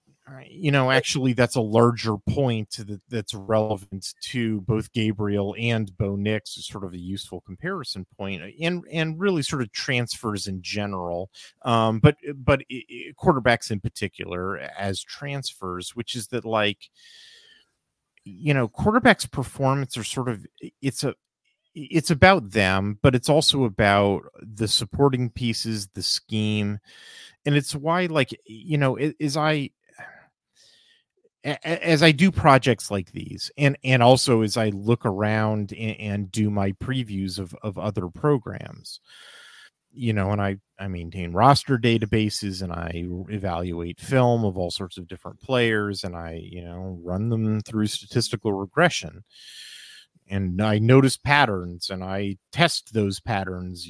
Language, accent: English, American